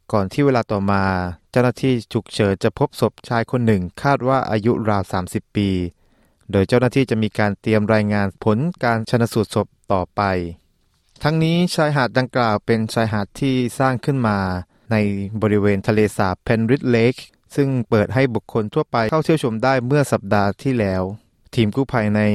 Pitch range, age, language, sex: 100-125 Hz, 20-39, Thai, male